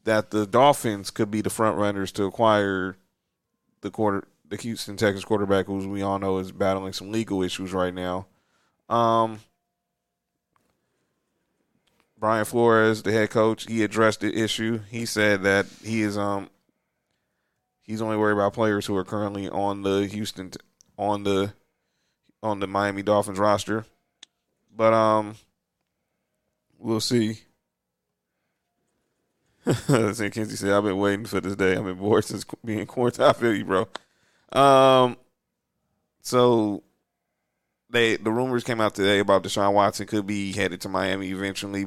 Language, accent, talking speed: English, American, 145 wpm